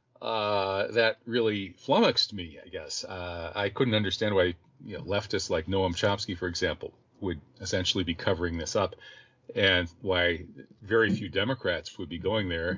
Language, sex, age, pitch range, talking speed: English, male, 40-59, 90-115 Hz, 165 wpm